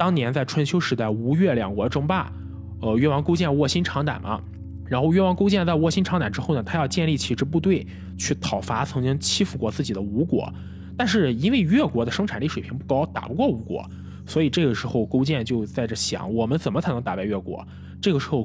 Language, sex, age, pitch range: Chinese, male, 20-39, 110-165 Hz